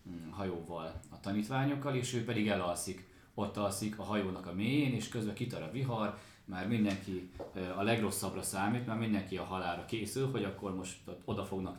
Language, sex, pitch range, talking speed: Hungarian, male, 95-120 Hz, 175 wpm